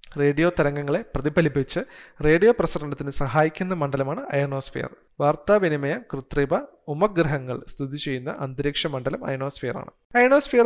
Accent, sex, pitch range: native, male, 140-180 Hz